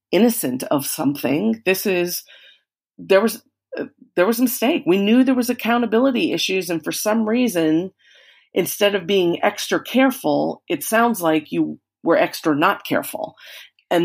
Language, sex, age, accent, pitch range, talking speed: English, female, 40-59, American, 155-225 Hz, 155 wpm